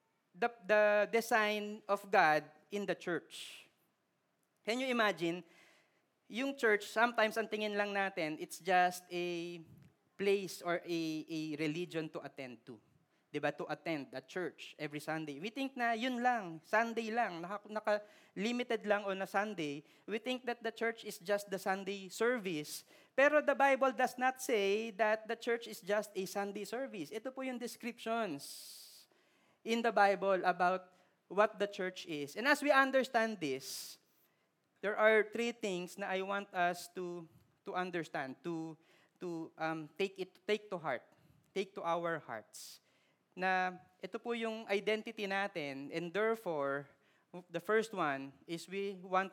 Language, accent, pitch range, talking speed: Filipino, native, 165-215 Hz, 155 wpm